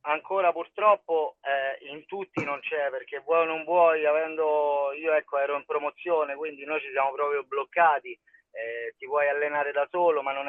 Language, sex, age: Italian, male, 30-49